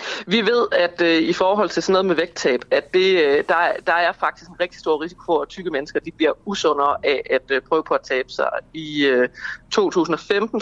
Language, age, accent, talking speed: Danish, 30-49, native, 220 wpm